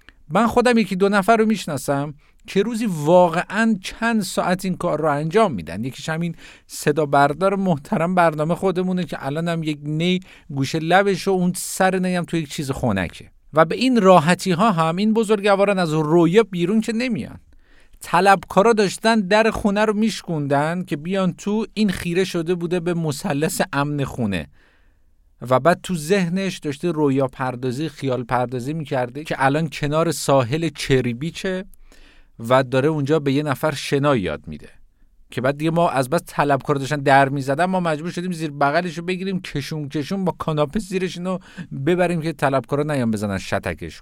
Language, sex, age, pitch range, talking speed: Persian, male, 50-69, 145-195 Hz, 165 wpm